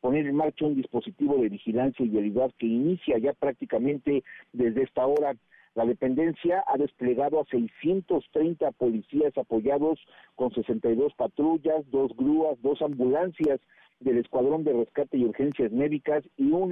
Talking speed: 145 wpm